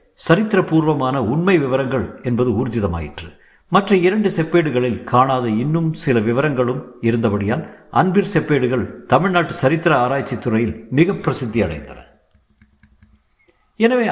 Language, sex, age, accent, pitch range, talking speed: Tamil, male, 50-69, native, 105-130 Hz, 95 wpm